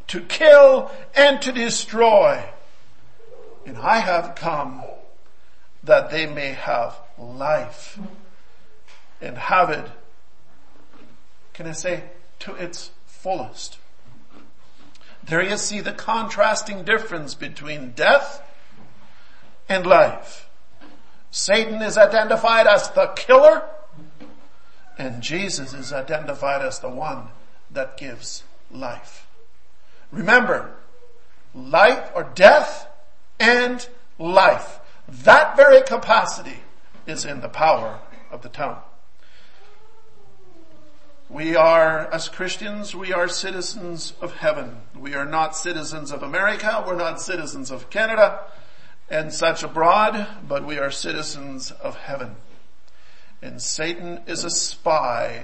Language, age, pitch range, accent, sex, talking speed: English, 50-69, 155-240 Hz, American, male, 105 wpm